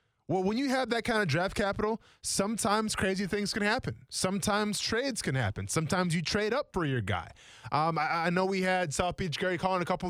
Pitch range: 140-190 Hz